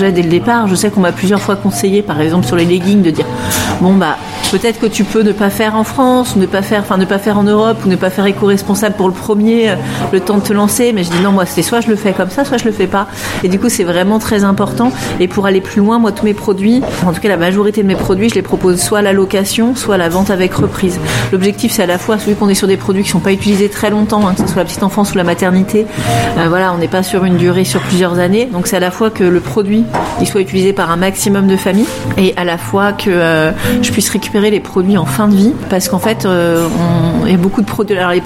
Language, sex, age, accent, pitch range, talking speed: French, female, 40-59, French, 180-210 Hz, 290 wpm